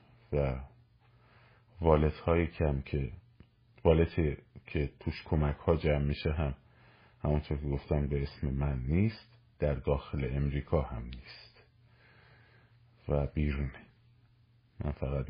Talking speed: 115 wpm